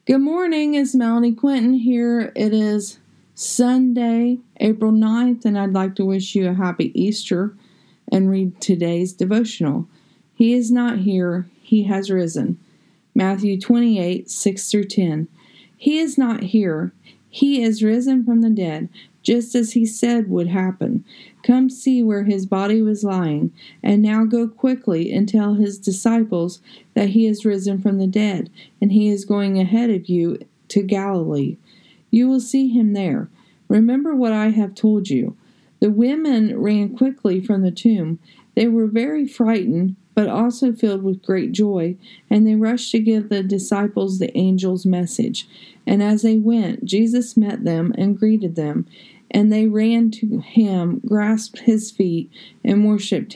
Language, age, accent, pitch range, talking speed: English, 40-59, American, 195-230 Hz, 160 wpm